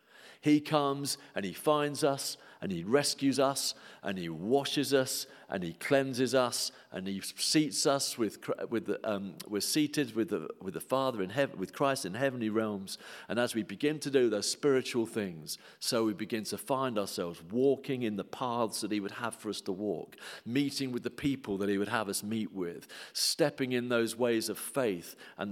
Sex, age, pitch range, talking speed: male, 50-69, 95-135 Hz, 200 wpm